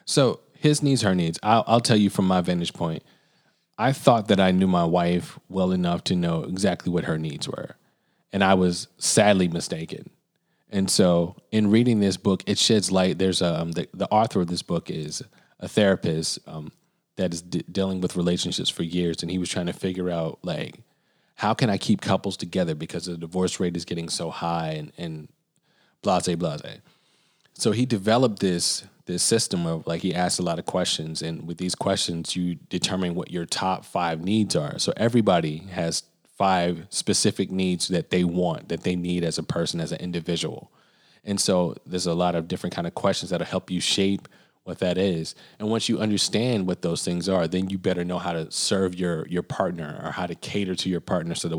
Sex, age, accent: male, 30-49, American